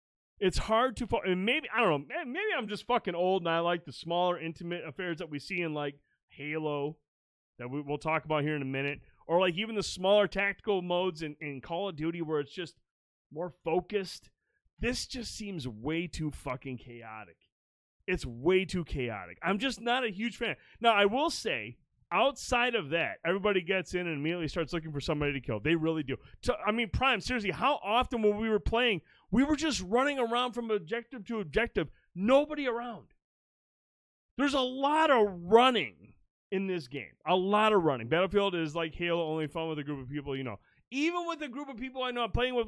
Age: 30-49